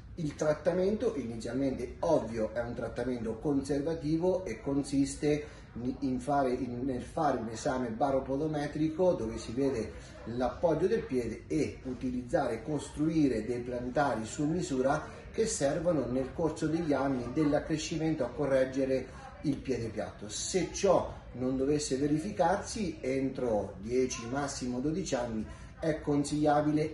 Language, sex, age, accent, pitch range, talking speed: Italian, male, 30-49, native, 125-150 Hz, 125 wpm